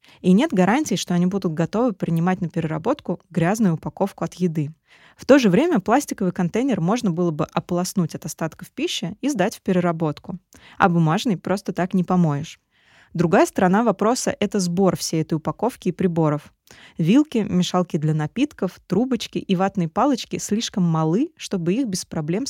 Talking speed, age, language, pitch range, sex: 165 wpm, 20-39, Russian, 170-205 Hz, female